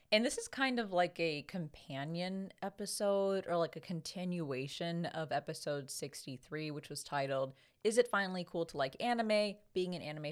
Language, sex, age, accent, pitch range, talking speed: English, female, 20-39, American, 145-185 Hz, 170 wpm